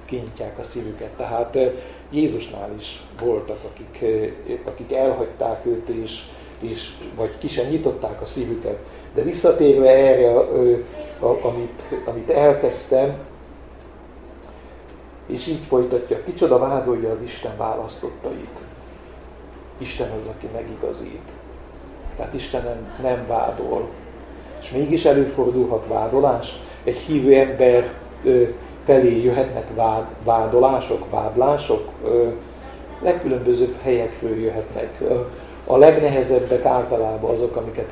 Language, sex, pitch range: Hungarian, male, 115-160 Hz